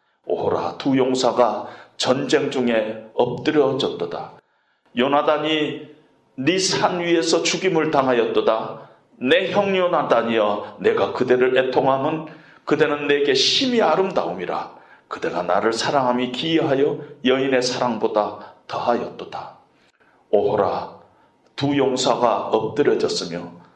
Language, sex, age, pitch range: Korean, male, 40-59, 125-200 Hz